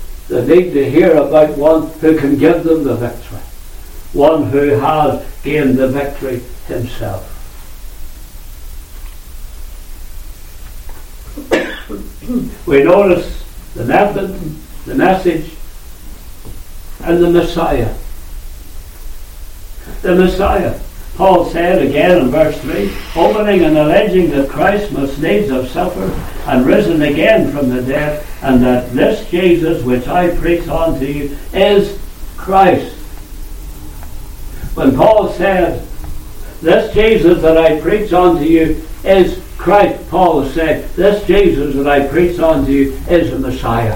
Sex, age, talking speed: male, 60-79, 115 wpm